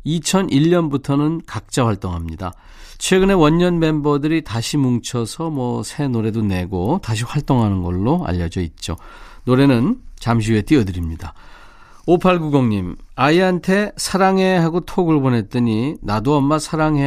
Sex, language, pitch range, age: male, Korean, 110-160 Hz, 40-59